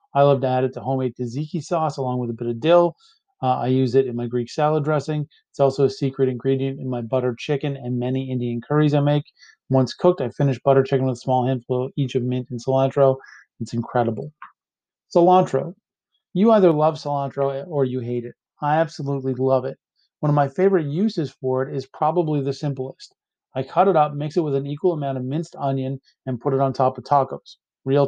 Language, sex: English, male